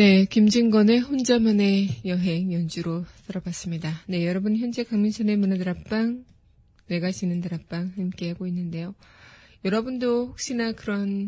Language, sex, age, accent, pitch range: Korean, female, 20-39, native, 175-205 Hz